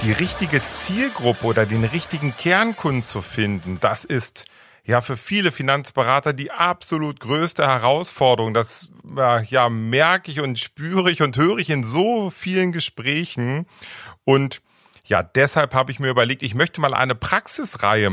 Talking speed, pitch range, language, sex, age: 150 wpm, 110-155 Hz, German, male, 40-59